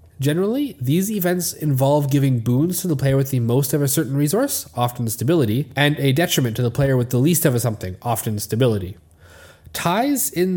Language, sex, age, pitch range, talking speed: English, male, 20-39, 120-160 Hz, 195 wpm